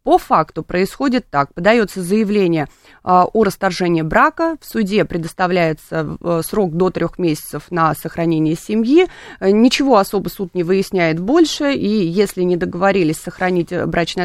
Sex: female